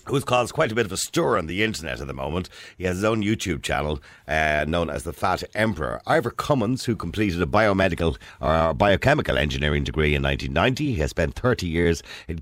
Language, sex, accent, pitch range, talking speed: English, male, Irish, 80-110 Hz, 215 wpm